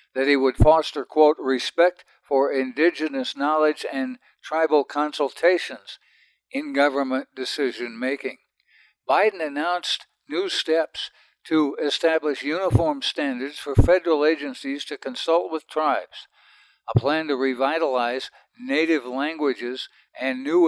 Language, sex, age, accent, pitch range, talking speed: English, male, 60-79, American, 135-165 Hz, 115 wpm